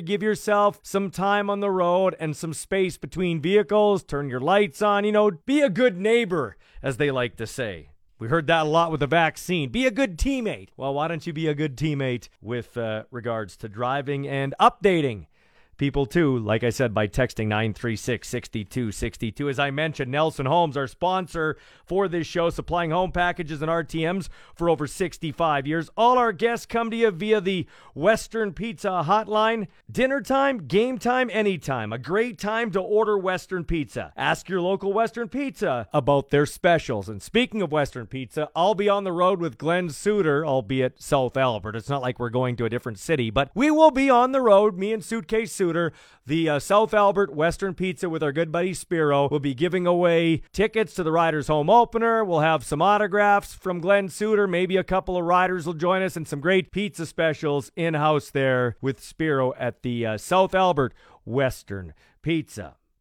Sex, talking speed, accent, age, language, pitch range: male, 190 wpm, American, 40-59, English, 140-200 Hz